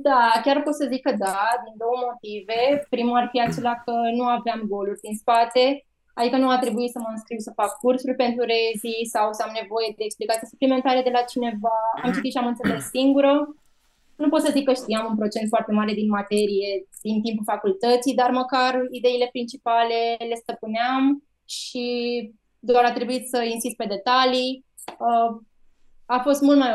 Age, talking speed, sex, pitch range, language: 20-39, 180 wpm, female, 220-250 Hz, Romanian